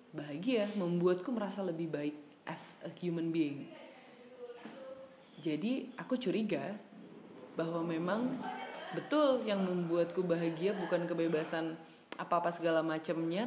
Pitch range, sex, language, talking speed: 165-215 Hz, female, Indonesian, 105 wpm